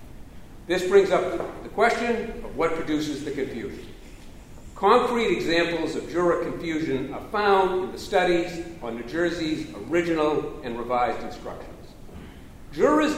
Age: 50-69